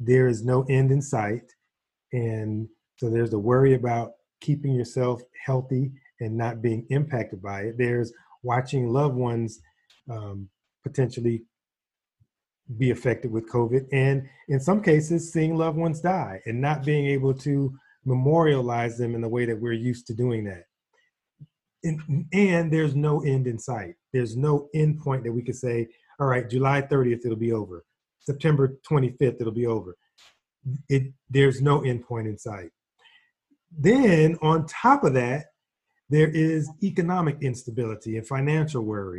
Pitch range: 115-150 Hz